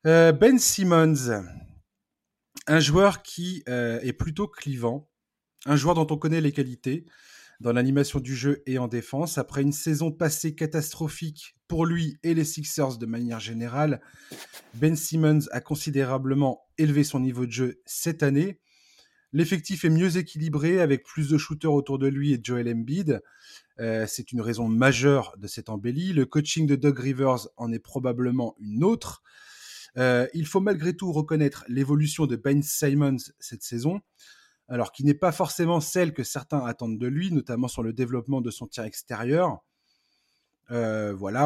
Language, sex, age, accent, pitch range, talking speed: French, male, 20-39, French, 125-160 Hz, 160 wpm